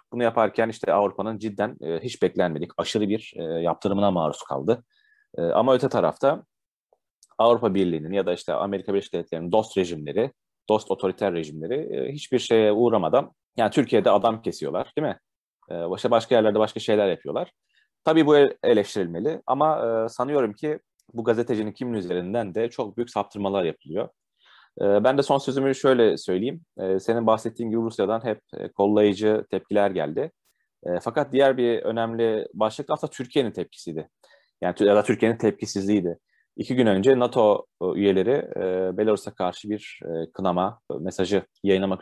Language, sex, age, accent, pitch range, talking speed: Turkish, male, 30-49, native, 100-120 Hz, 145 wpm